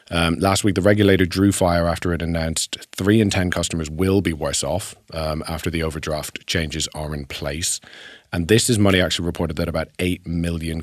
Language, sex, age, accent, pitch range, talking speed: English, male, 30-49, British, 80-95 Hz, 200 wpm